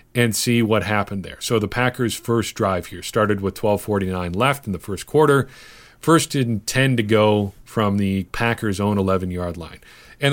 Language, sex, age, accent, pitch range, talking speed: English, male, 40-59, American, 95-115 Hz, 180 wpm